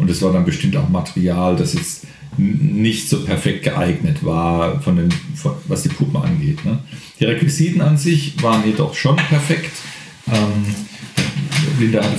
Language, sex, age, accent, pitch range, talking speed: German, male, 40-59, German, 135-160 Hz, 145 wpm